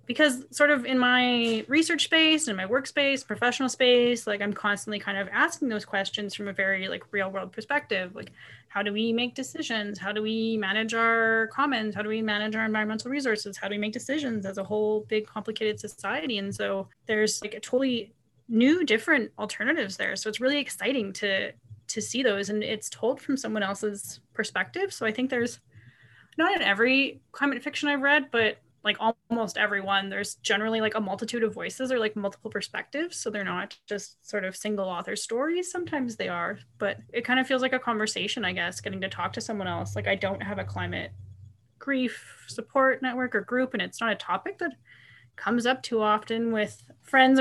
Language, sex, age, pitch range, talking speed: English, female, 20-39, 200-255 Hz, 200 wpm